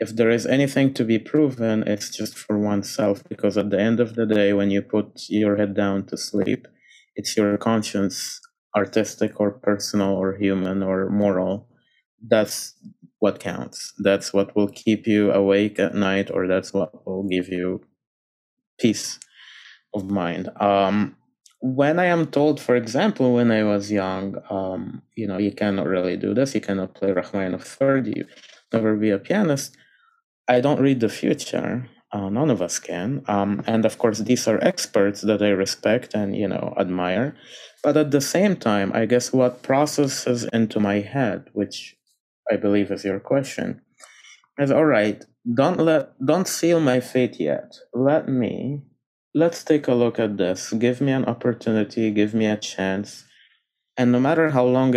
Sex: male